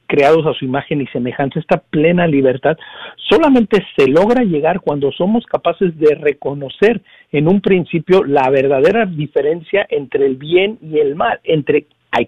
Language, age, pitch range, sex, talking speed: Spanish, 50-69, 145-195 Hz, male, 155 wpm